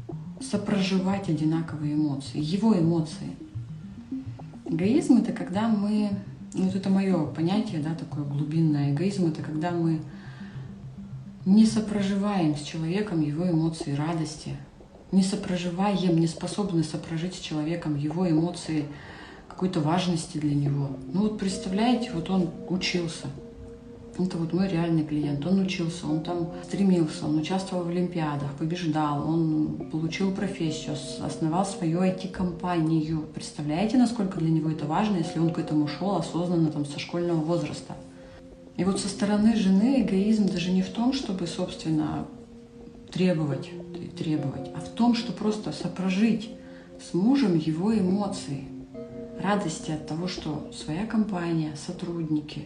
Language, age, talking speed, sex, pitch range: Russian, 30-49, 130 wpm, female, 155-195 Hz